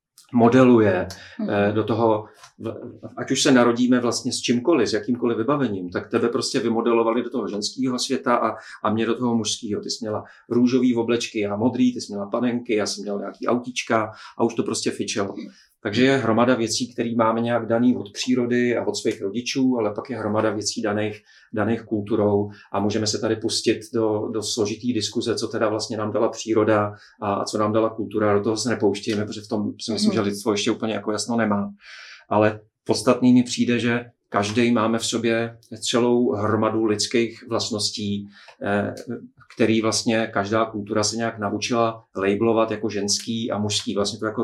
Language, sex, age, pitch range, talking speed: Czech, male, 40-59, 105-120 Hz, 180 wpm